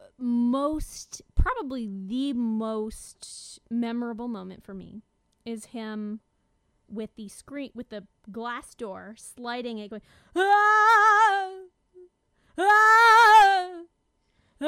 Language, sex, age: English, female, 20-39